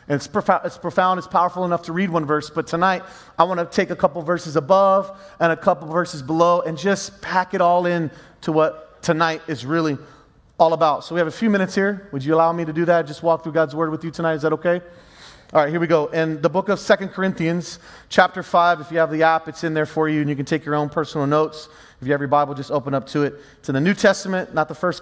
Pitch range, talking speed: 160-195 Hz, 270 wpm